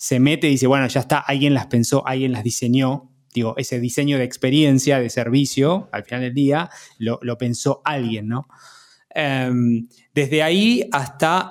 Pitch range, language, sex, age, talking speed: 130-160 Hz, Spanish, male, 20-39, 170 wpm